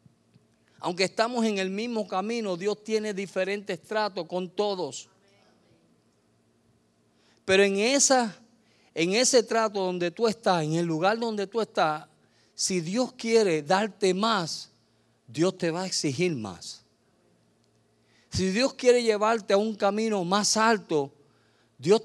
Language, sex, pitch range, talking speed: Spanish, male, 145-210 Hz, 130 wpm